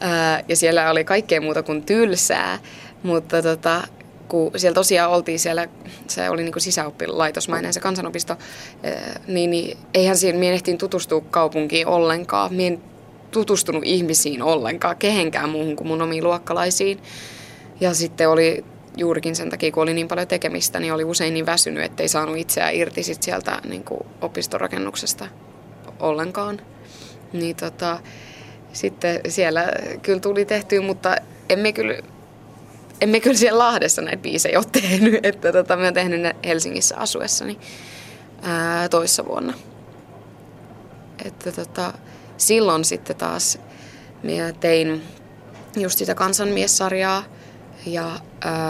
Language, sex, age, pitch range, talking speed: Finnish, female, 20-39, 160-185 Hz, 125 wpm